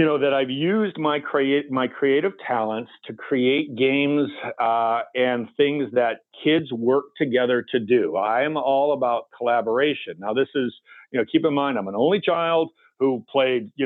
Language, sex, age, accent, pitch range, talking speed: English, male, 50-69, American, 125-155 Hz, 180 wpm